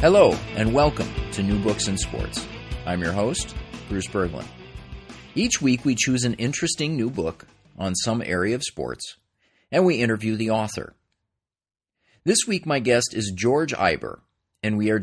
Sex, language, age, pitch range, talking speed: male, English, 40-59, 95-125 Hz, 165 wpm